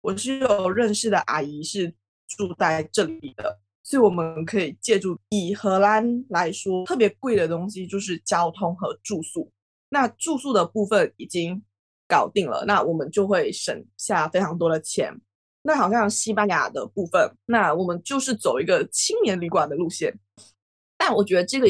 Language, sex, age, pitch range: Chinese, female, 20-39, 170-225 Hz